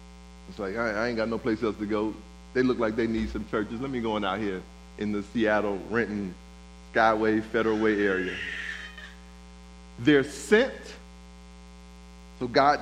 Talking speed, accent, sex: 165 wpm, American, male